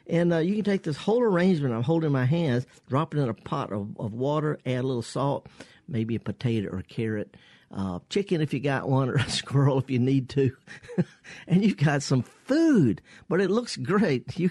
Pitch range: 120-160 Hz